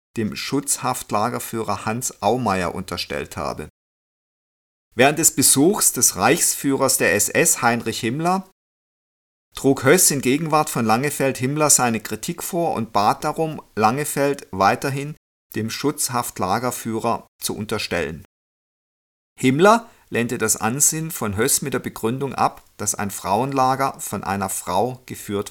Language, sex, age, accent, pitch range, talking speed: German, male, 50-69, German, 110-140 Hz, 120 wpm